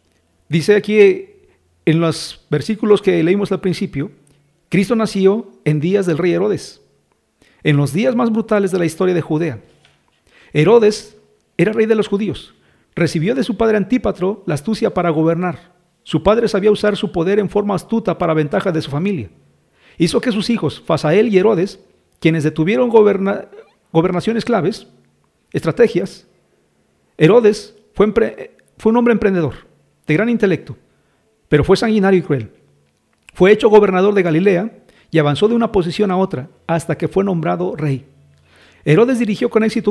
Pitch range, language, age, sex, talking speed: 160-210 Hz, Spanish, 50-69, male, 155 wpm